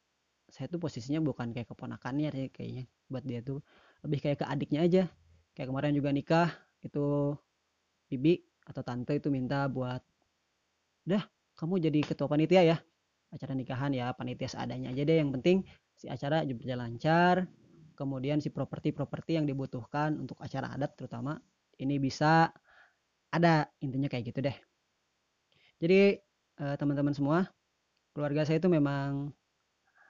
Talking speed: 140 wpm